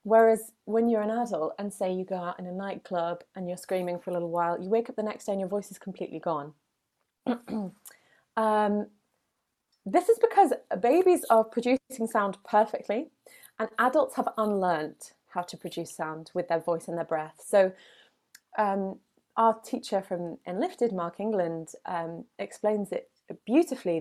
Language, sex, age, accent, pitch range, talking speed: English, female, 20-39, British, 175-225 Hz, 165 wpm